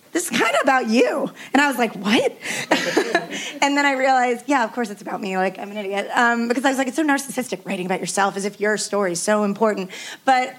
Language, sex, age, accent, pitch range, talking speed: English, female, 20-39, American, 205-260 Hz, 250 wpm